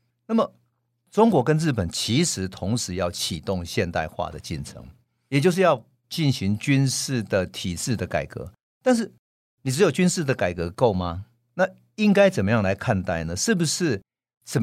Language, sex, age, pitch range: Chinese, male, 50-69, 90-130 Hz